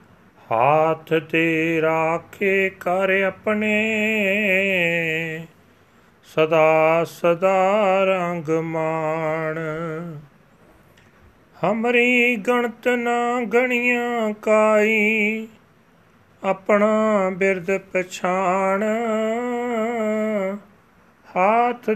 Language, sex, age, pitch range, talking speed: Punjabi, male, 40-59, 165-215 Hz, 45 wpm